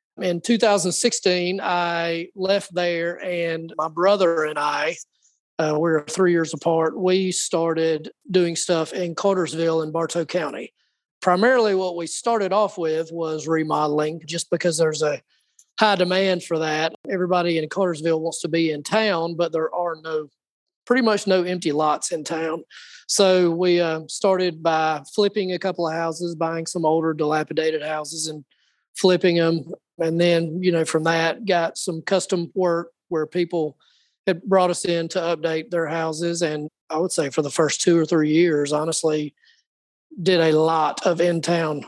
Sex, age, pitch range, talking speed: male, 30-49, 160-185 Hz, 165 wpm